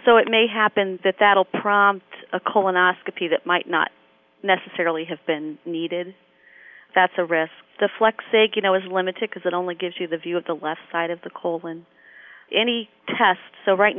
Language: English